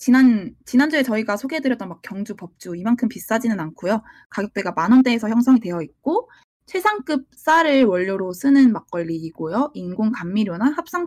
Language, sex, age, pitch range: Korean, female, 20-39, 200-275 Hz